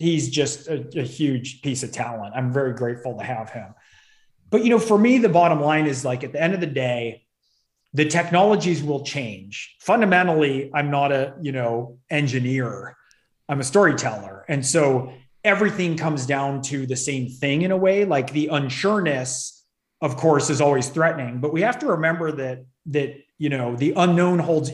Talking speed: 185 wpm